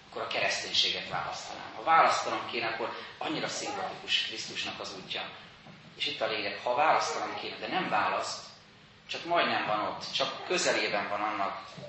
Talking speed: 155 wpm